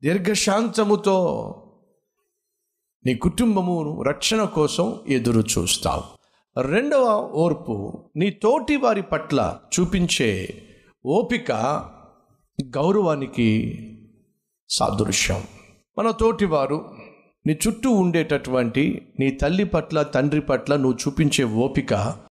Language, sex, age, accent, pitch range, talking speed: Telugu, male, 50-69, native, 125-195 Hz, 85 wpm